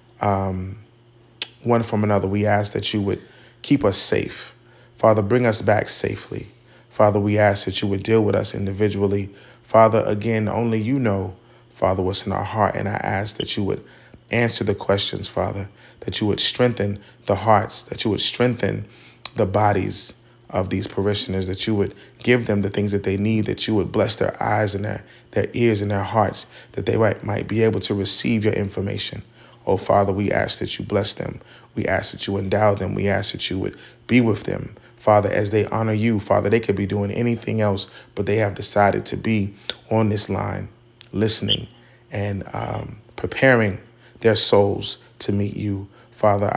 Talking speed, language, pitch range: 190 wpm, English, 100-115 Hz